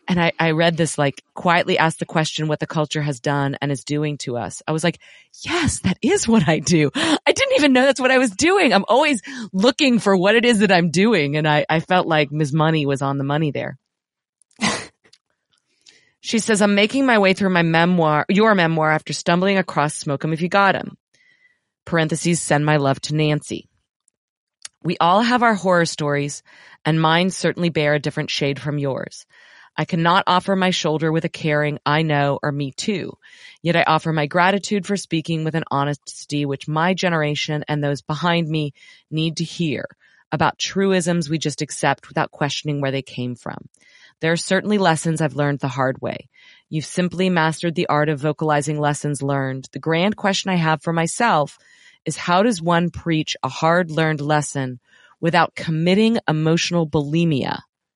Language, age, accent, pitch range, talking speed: English, 30-49, American, 150-185 Hz, 190 wpm